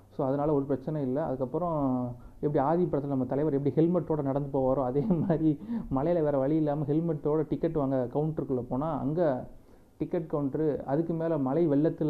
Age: 30-49